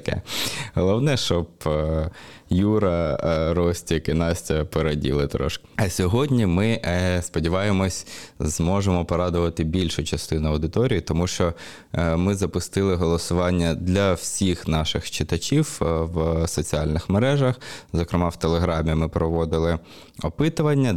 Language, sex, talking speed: Ukrainian, male, 100 wpm